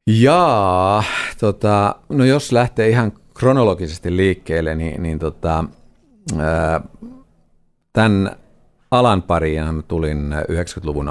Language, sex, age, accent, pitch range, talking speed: Finnish, male, 50-69, native, 80-100 Hz, 85 wpm